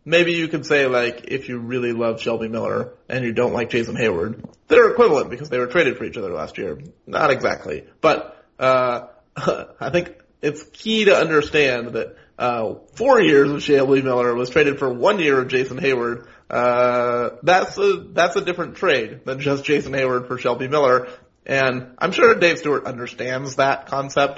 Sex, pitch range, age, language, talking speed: male, 125-145 Hz, 30-49, English, 185 wpm